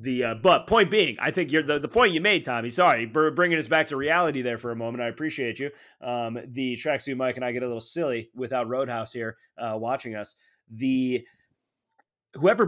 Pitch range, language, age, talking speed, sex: 105-135 Hz, English, 30-49, 220 wpm, male